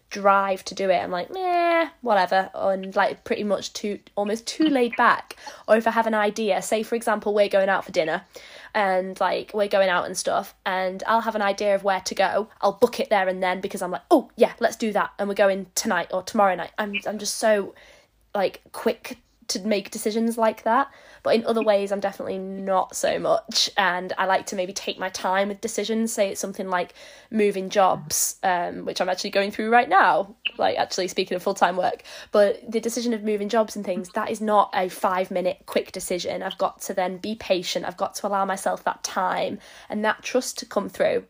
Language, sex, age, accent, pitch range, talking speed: English, female, 10-29, British, 190-220 Hz, 225 wpm